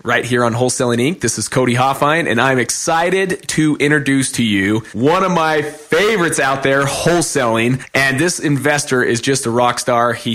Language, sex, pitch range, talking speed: English, male, 125-165 Hz, 185 wpm